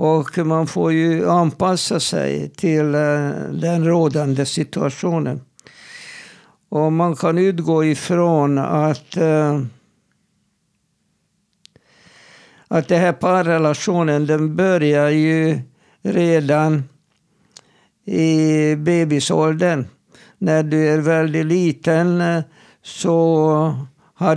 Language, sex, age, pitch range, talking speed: Swedish, male, 60-79, 150-175 Hz, 80 wpm